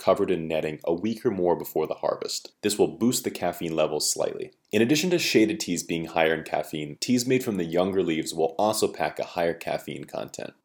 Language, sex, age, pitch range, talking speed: English, male, 30-49, 80-110 Hz, 220 wpm